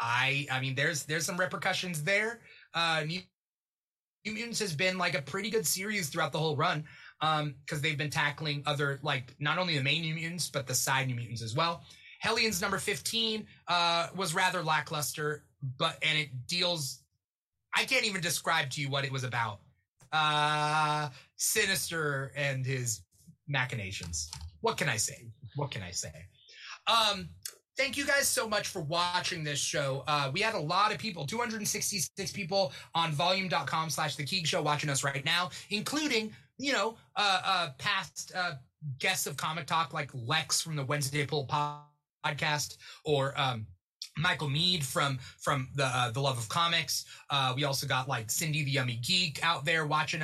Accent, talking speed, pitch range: American, 175 wpm, 140-185 Hz